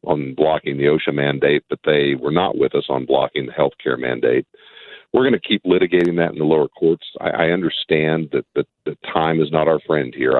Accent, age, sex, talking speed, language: American, 50-69, male, 220 wpm, English